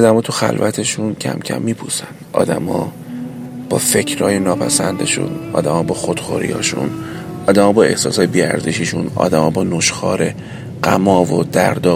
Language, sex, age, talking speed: Persian, male, 30-49, 125 wpm